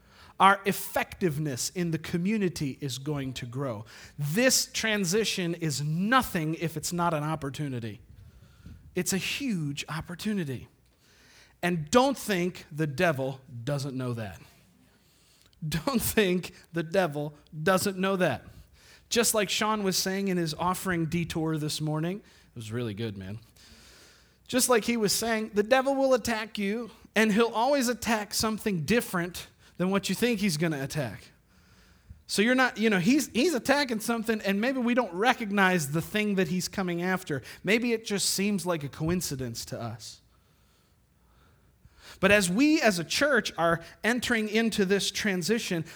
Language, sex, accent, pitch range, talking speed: English, male, American, 140-210 Hz, 155 wpm